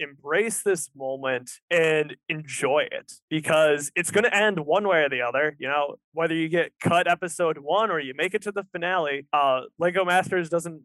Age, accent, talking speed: 20-39, American, 195 wpm